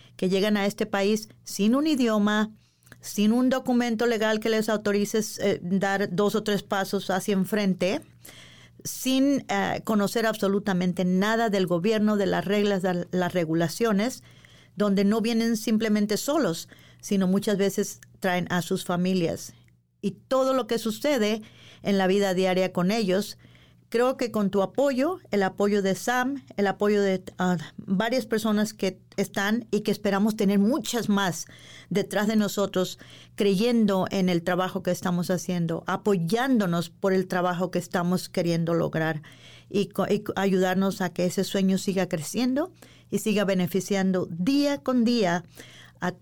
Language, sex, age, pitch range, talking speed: Spanish, female, 40-59, 185-220 Hz, 145 wpm